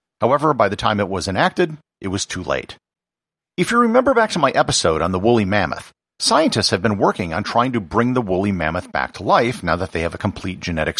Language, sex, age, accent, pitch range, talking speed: English, male, 50-69, American, 90-130 Hz, 235 wpm